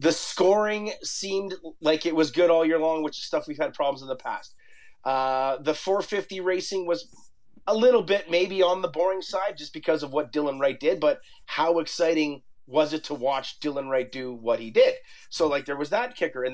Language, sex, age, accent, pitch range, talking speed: English, male, 30-49, American, 135-180 Hz, 215 wpm